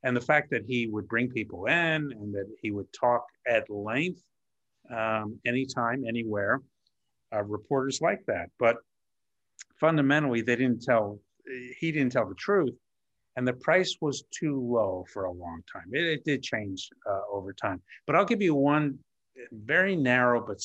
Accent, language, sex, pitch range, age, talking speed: American, English, male, 100-135 Hz, 50-69, 170 wpm